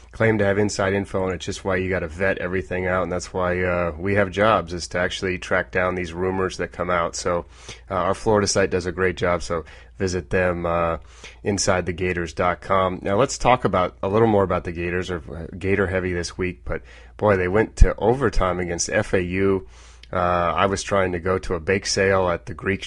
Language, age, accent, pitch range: English, 30-49, American, 90-100 Hz